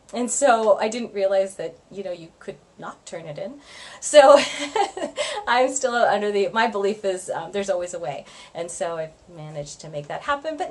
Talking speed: 200 wpm